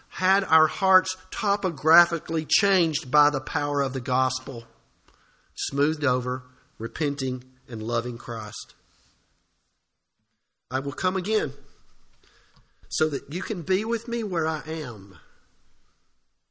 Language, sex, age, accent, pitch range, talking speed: English, male, 50-69, American, 120-165 Hz, 115 wpm